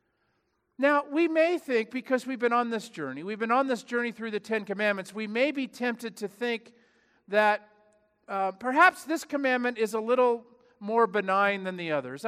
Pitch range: 185-250 Hz